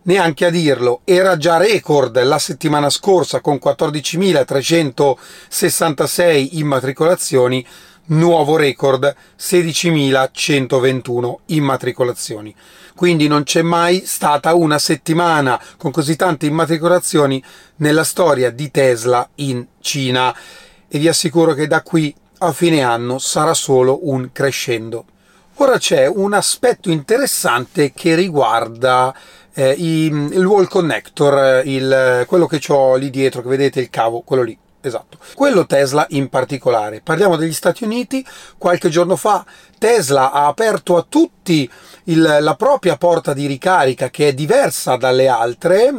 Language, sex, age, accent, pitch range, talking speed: Italian, male, 30-49, native, 135-175 Hz, 125 wpm